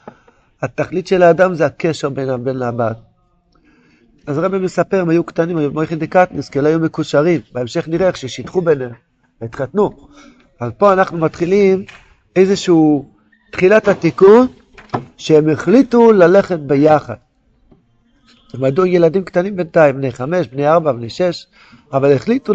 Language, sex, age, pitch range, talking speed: Hebrew, male, 50-69, 140-180 Hz, 135 wpm